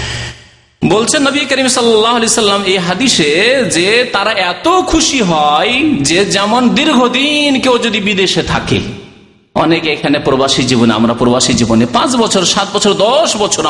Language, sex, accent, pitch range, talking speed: Bengali, male, native, 170-235 Hz, 75 wpm